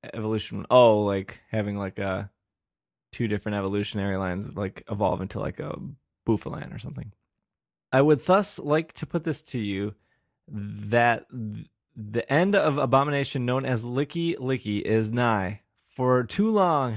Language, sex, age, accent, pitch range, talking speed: English, male, 20-39, American, 110-145 Hz, 150 wpm